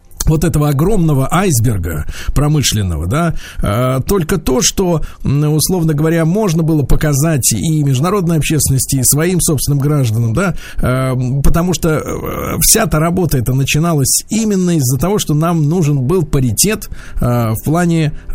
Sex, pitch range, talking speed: male, 130-175 Hz, 130 wpm